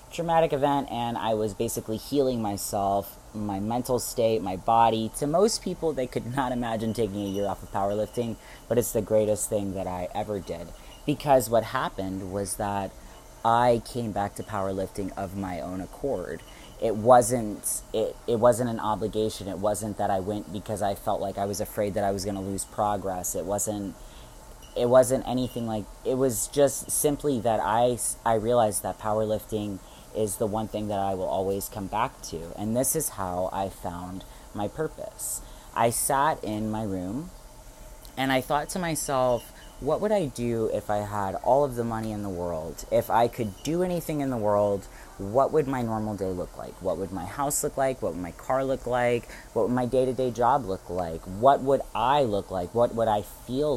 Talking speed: 200 wpm